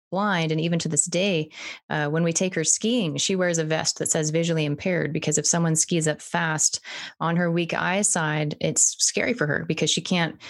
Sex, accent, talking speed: female, American, 215 wpm